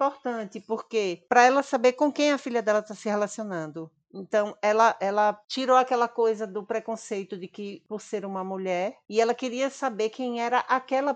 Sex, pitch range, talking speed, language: female, 200-250 Hz, 185 wpm, Portuguese